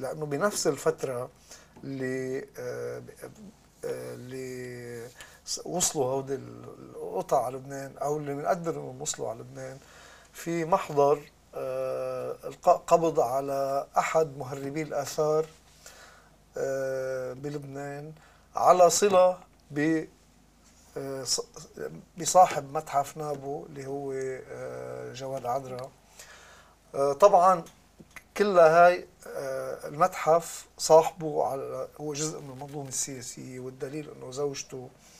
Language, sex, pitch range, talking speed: Arabic, male, 130-155 Hz, 90 wpm